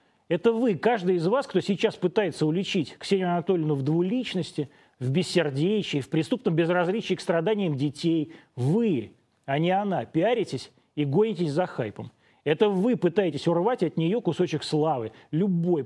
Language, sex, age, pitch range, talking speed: Russian, male, 30-49, 150-195 Hz, 150 wpm